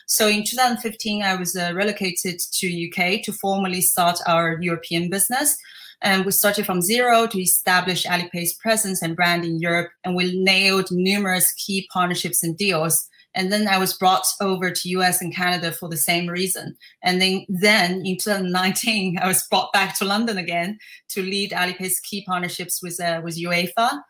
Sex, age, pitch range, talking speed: female, 30-49, 175-195 Hz, 175 wpm